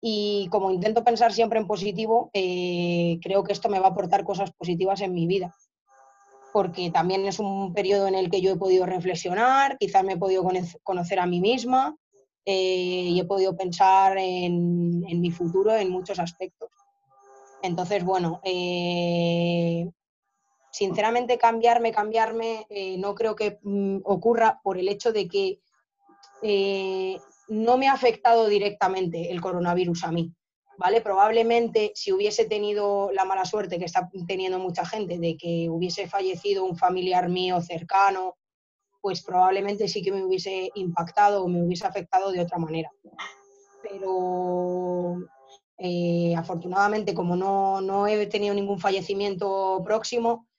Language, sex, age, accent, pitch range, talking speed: Spanish, female, 20-39, Spanish, 180-210 Hz, 150 wpm